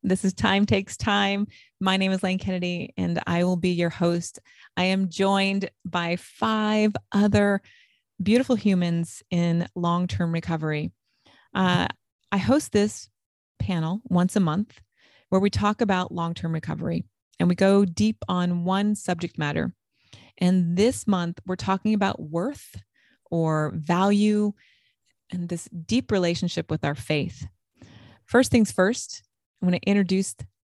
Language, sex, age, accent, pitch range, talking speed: English, female, 30-49, American, 170-220 Hz, 140 wpm